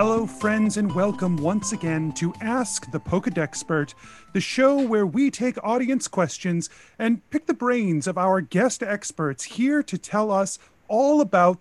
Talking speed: 160 wpm